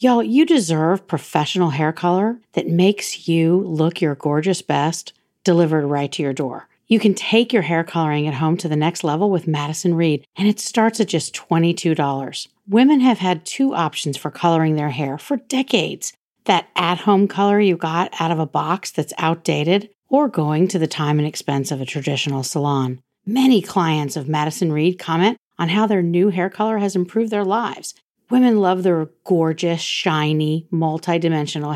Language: English